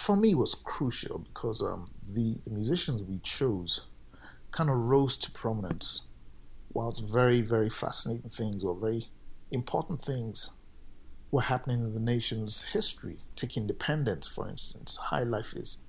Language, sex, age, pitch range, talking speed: English, male, 50-69, 100-130 Hz, 145 wpm